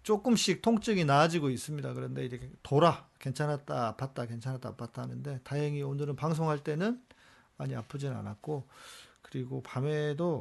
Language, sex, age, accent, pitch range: Korean, male, 40-59, native, 130-165 Hz